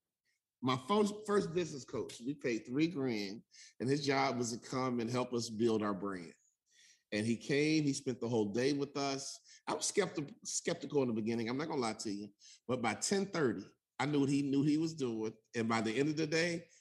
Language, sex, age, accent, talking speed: English, male, 30-49, American, 220 wpm